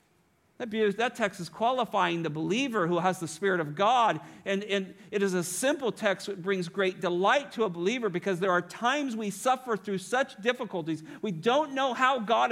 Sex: male